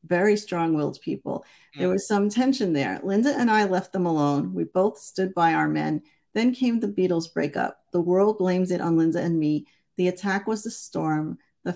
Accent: American